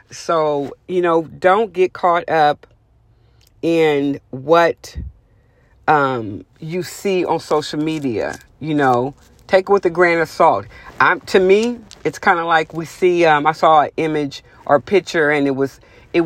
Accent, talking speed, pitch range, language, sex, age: American, 165 wpm, 140-175 Hz, English, female, 40-59